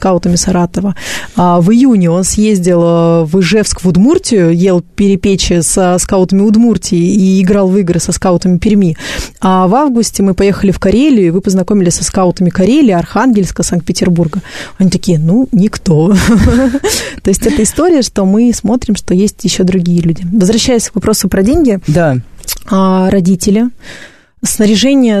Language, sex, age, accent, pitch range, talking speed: Russian, female, 20-39, native, 180-205 Hz, 145 wpm